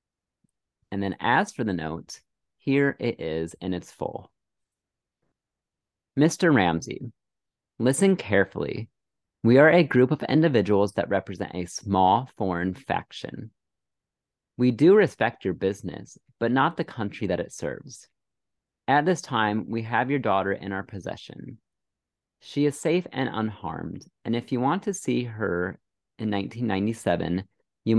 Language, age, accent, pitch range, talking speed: English, 30-49, American, 95-135 Hz, 140 wpm